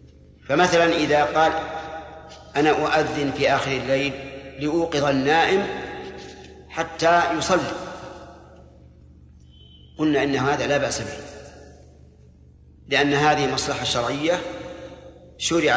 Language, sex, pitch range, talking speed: Arabic, male, 120-155 Hz, 90 wpm